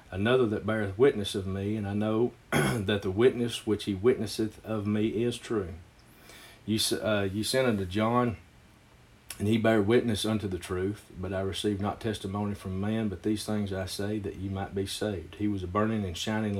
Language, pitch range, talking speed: English, 95-110 Hz, 200 wpm